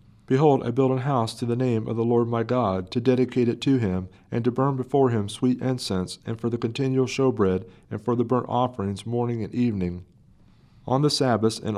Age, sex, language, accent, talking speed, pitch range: 40-59, male, English, American, 215 wpm, 105-130 Hz